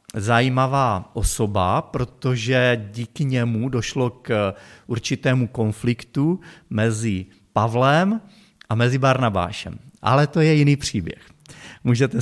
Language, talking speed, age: Czech, 100 wpm, 40-59